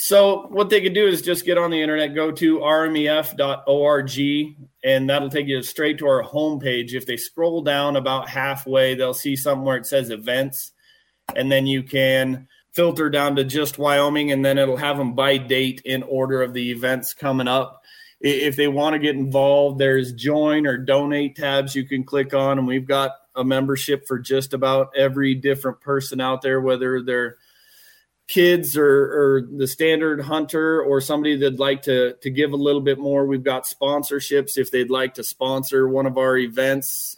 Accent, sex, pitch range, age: American, male, 130-145 Hz, 30-49